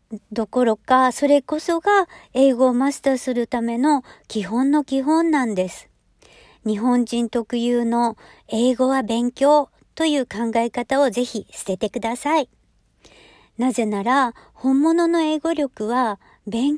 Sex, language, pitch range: male, Japanese, 210-270 Hz